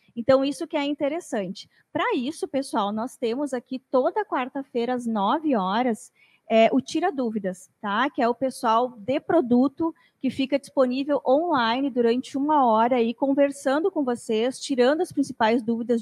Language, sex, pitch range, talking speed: Portuguese, female, 230-280 Hz, 155 wpm